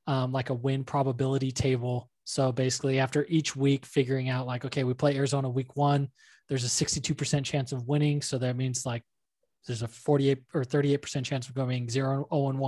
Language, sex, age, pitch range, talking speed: English, male, 20-39, 125-140 Hz, 195 wpm